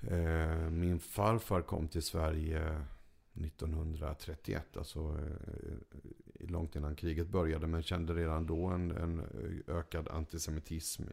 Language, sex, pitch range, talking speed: English, male, 80-90 Hz, 95 wpm